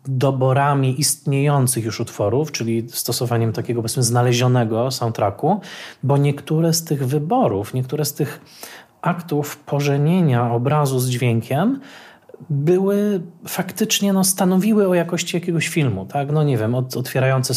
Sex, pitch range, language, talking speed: male, 120-145 Hz, Polish, 125 wpm